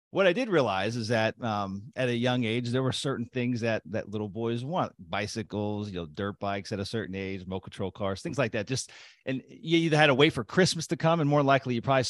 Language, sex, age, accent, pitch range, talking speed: English, male, 40-59, American, 105-130 Hz, 255 wpm